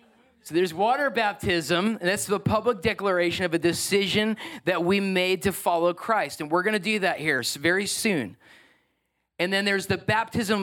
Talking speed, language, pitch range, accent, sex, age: 175 wpm, English, 175-220 Hz, American, male, 40-59